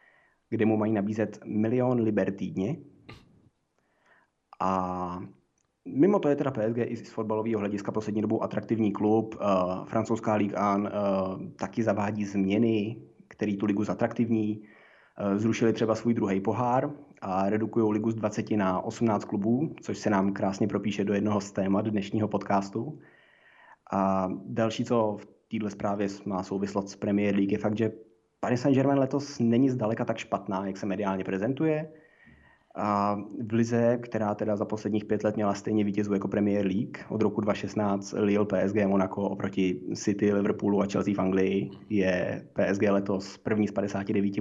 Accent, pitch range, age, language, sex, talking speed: native, 100-110 Hz, 20-39, Czech, male, 160 wpm